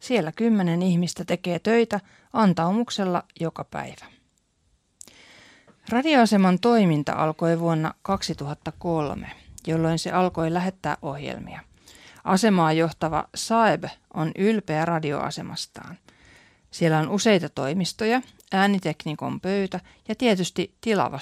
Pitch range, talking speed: 155-210 Hz, 95 wpm